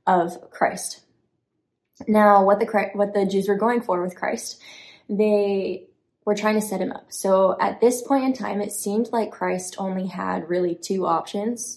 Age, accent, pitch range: 20-39, American, 190-225 Hz